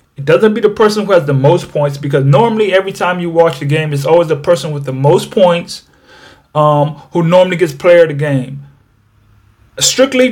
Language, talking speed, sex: English, 200 wpm, male